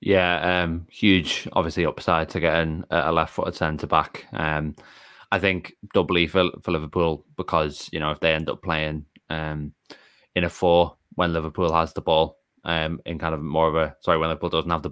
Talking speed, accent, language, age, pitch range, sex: 185 wpm, British, English, 20-39, 80-85 Hz, male